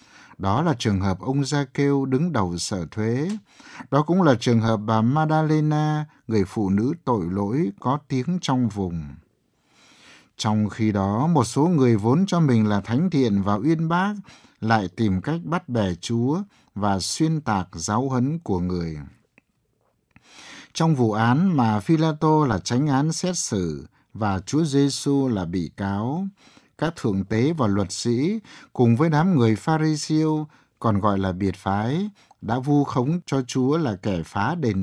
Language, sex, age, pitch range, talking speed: Vietnamese, male, 60-79, 100-150 Hz, 165 wpm